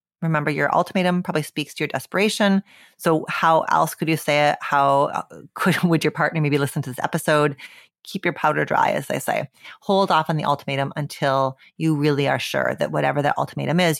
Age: 30-49